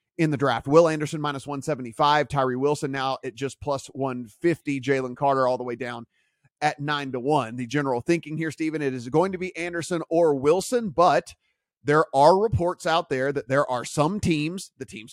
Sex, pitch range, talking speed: male, 140-170 Hz, 200 wpm